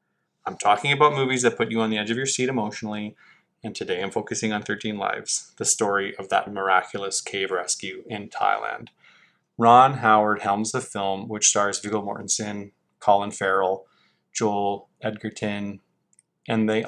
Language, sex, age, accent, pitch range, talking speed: English, male, 20-39, American, 105-120 Hz, 160 wpm